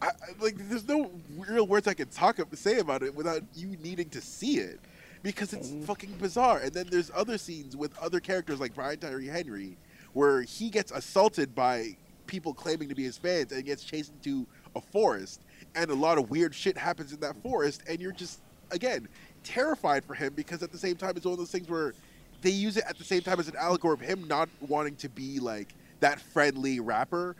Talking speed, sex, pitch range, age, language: 220 wpm, male, 135-180 Hz, 20-39, English